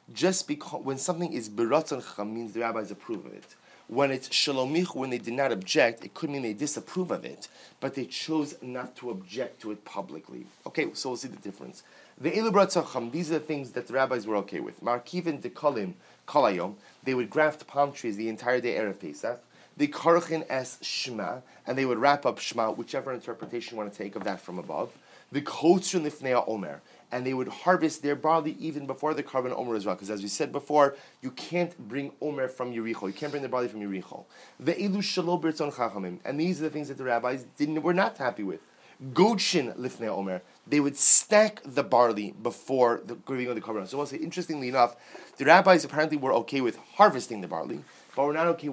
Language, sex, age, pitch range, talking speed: English, male, 30-49, 120-160 Hz, 210 wpm